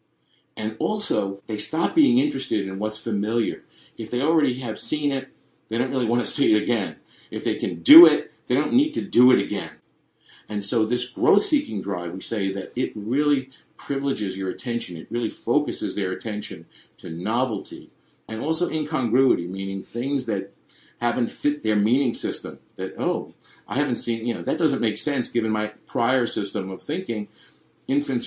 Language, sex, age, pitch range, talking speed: English, male, 50-69, 100-130 Hz, 180 wpm